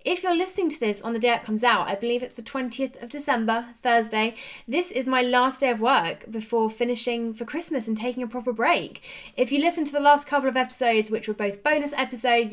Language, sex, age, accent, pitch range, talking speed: English, female, 10-29, British, 210-270 Hz, 235 wpm